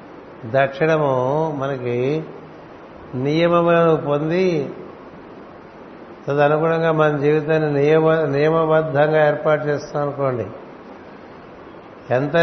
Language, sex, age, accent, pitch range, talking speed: Telugu, male, 60-79, native, 140-160 Hz, 65 wpm